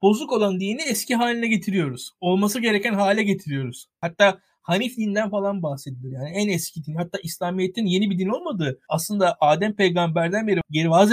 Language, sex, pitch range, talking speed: Turkish, male, 165-230 Hz, 160 wpm